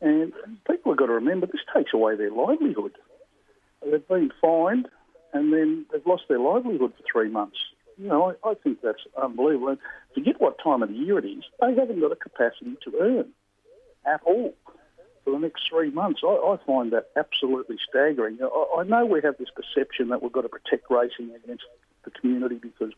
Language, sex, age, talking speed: English, male, 60-79, 195 wpm